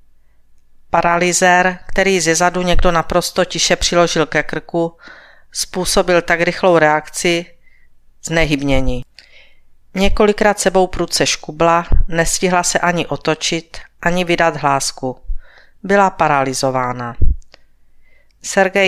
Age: 40-59